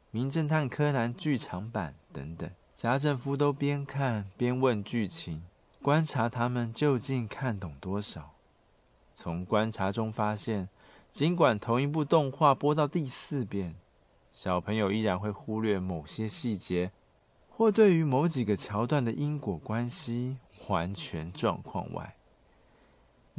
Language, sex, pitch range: Chinese, male, 100-130 Hz